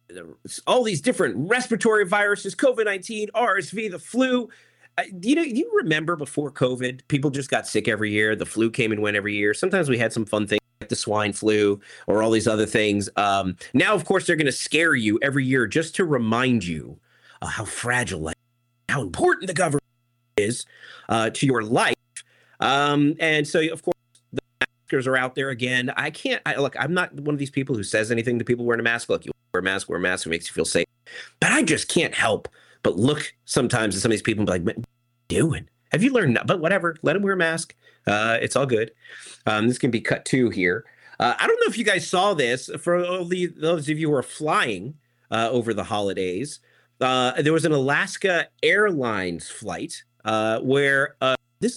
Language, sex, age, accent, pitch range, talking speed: English, male, 30-49, American, 110-165 Hz, 210 wpm